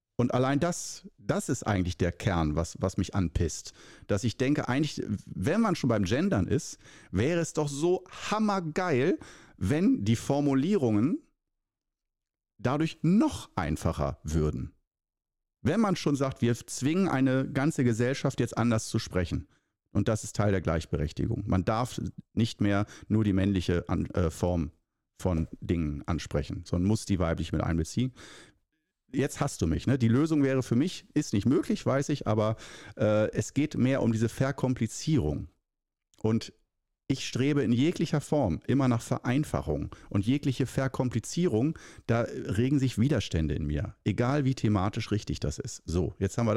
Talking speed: 155 wpm